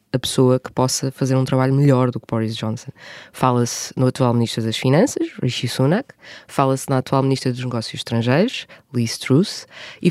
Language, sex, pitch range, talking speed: Portuguese, female, 125-150 Hz, 180 wpm